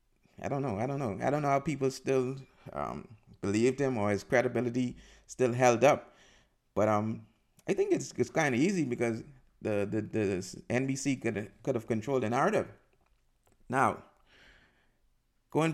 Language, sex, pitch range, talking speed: English, male, 110-135 Hz, 165 wpm